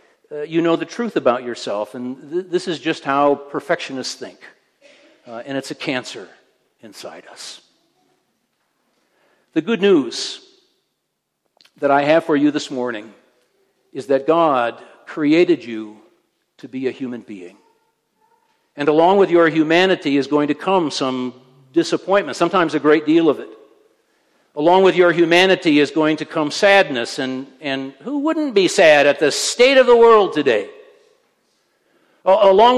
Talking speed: 150 wpm